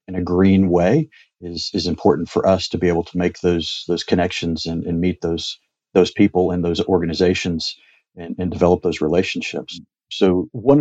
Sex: male